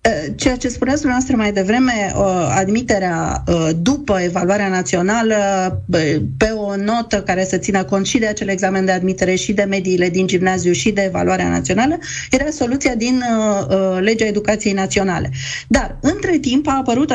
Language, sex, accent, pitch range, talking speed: Romanian, female, native, 190-235 Hz, 150 wpm